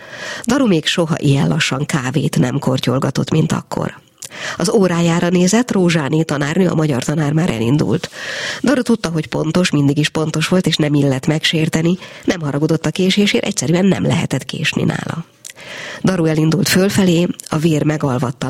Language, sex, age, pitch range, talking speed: Hungarian, female, 50-69, 145-180 Hz, 150 wpm